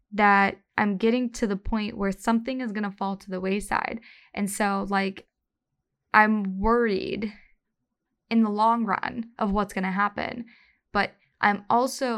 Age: 10-29